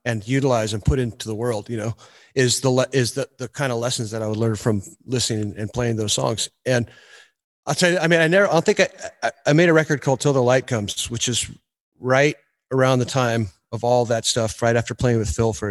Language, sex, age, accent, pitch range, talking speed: English, male, 30-49, American, 115-145 Hz, 240 wpm